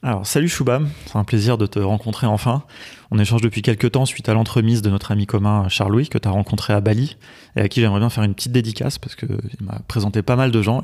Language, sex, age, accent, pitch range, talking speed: French, male, 30-49, French, 100-115 Hz, 255 wpm